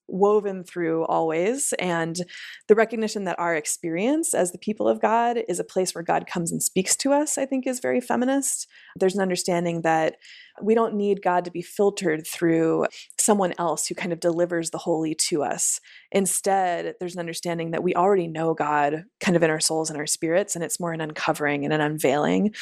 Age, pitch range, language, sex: 20-39, 165-215 Hz, English, female